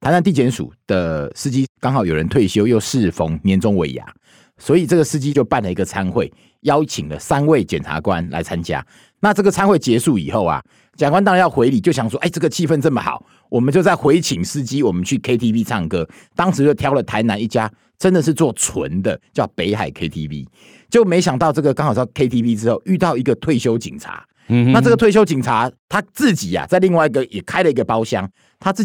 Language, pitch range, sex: Chinese, 110-175 Hz, male